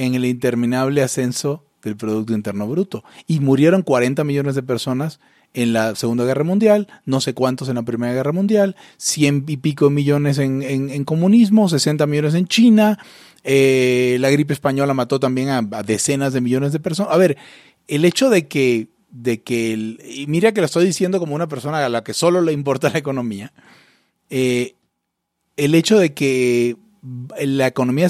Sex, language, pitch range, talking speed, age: male, Spanish, 130-170 Hz, 185 wpm, 30-49